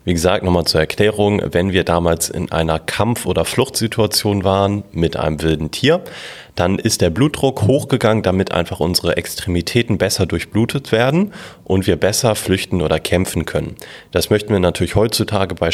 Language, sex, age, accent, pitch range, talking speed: German, male, 30-49, German, 85-110 Hz, 165 wpm